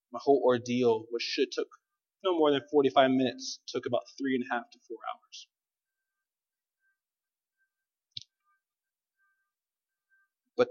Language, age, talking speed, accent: English, 30-49, 120 wpm, American